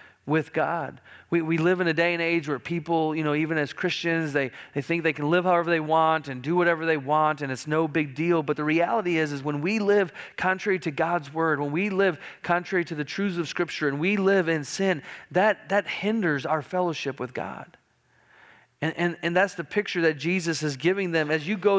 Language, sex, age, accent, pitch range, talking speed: English, male, 40-59, American, 150-180 Hz, 230 wpm